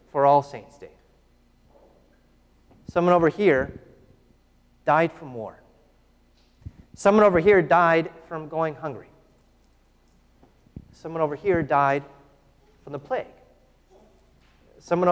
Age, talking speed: 30-49, 100 wpm